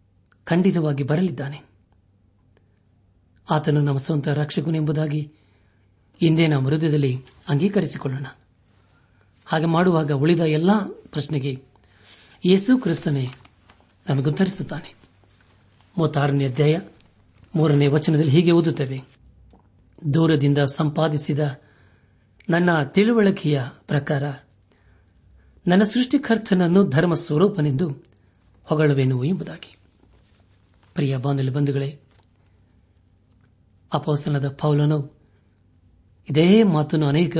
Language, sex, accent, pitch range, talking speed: Kannada, male, native, 100-160 Hz, 65 wpm